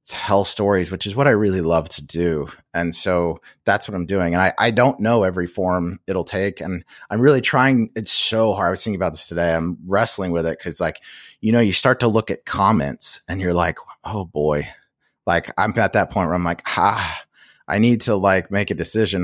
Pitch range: 95-140 Hz